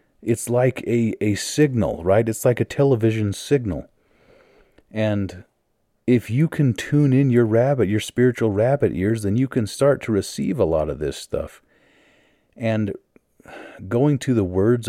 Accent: American